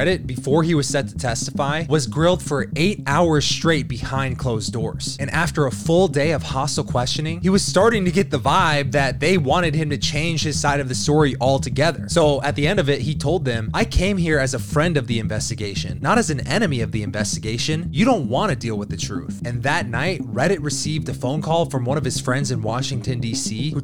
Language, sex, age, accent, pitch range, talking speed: English, male, 20-39, American, 130-165 Hz, 230 wpm